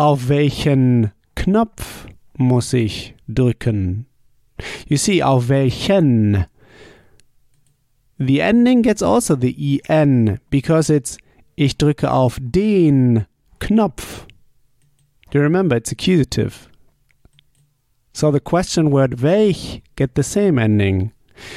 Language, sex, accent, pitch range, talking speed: German, male, German, 120-155 Hz, 105 wpm